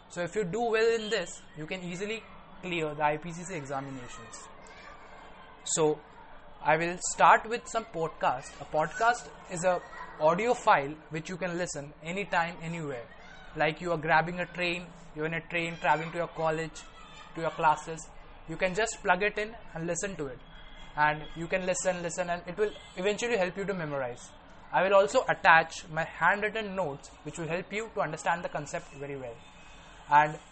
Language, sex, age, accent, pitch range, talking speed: English, male, 20-39, Indian, 155-195 Hz, 180 wpm